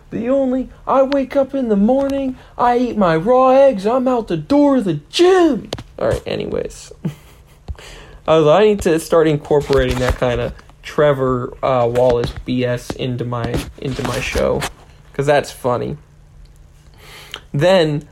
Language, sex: English, male